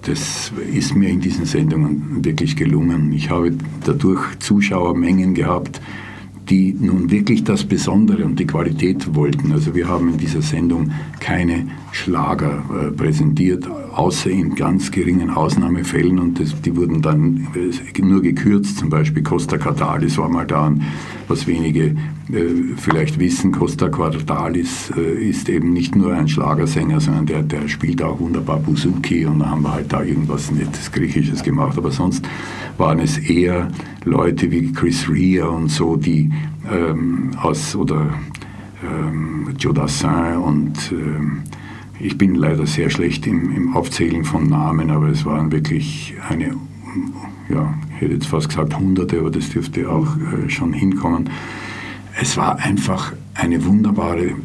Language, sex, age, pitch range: German, male, 50-69, 80-100 Hz